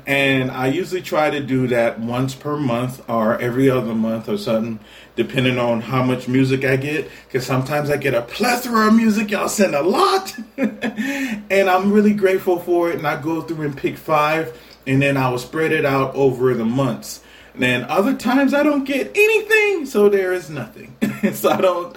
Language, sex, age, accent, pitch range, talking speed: English, male, 30-49, American, 120-160 Hz, 200 wpm